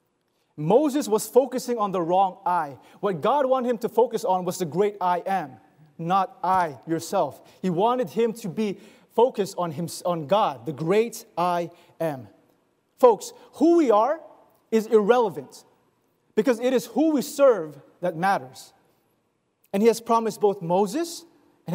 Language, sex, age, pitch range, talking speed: English, male, 30-49, 170-225 Hz, 150 wpm